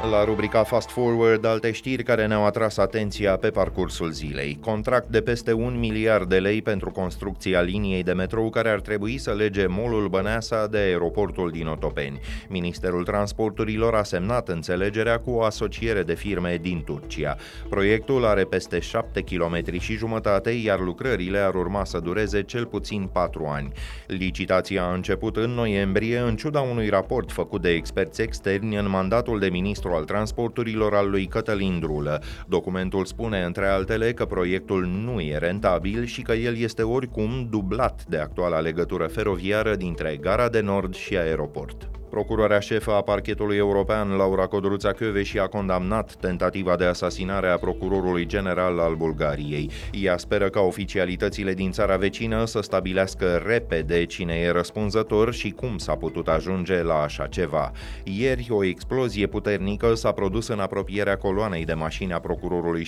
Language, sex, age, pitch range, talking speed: Romanian, male, 30-49, 90-110 Hz, 155 wpm